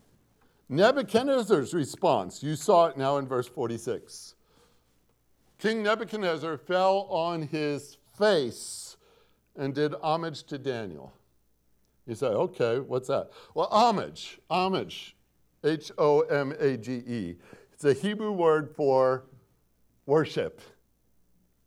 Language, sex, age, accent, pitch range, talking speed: English, male, 50-69, American, 110-180 Hz, 95 wpm